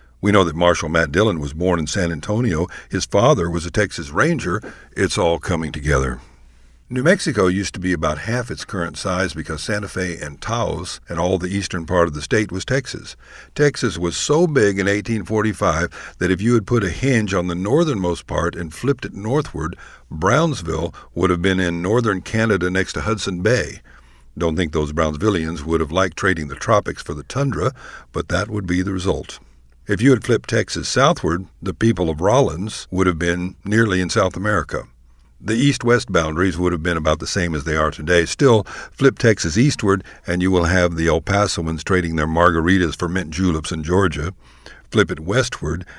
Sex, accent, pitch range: male, American, 80-105 Hz